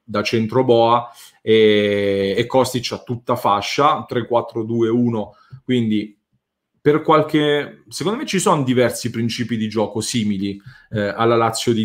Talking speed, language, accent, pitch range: 130 wpm, English, Italian, 120-155 Hz